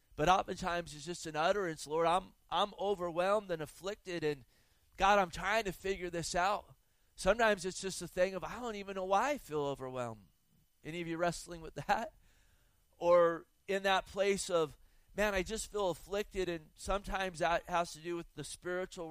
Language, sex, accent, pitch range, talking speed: English, male, American, 155-180 Hz, 185 wpm